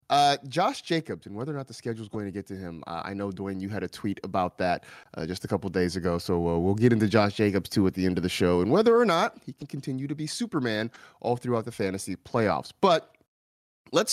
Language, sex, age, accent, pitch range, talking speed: English, male, 30-49, American, 100-135 Hz, 260 wpm